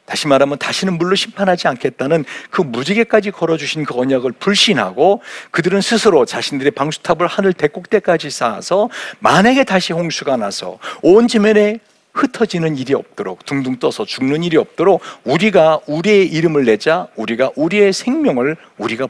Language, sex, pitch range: Korean, male, 145-210 Hz